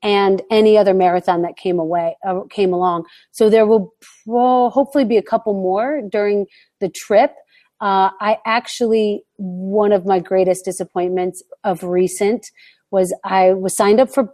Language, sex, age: English, female, 40-59